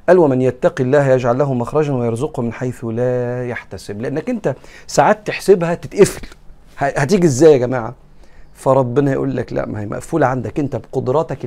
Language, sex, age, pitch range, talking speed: Arabic, male, 40-59, 110-145 Hz, 160 wpm